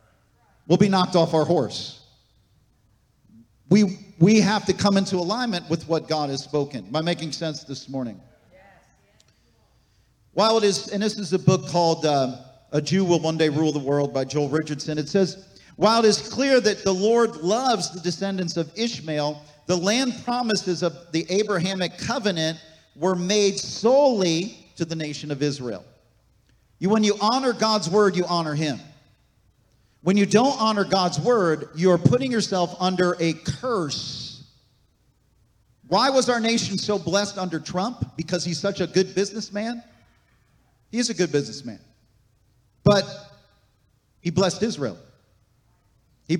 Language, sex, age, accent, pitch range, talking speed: English, male, 50-69, American, 135-205 Hz, 155 wpm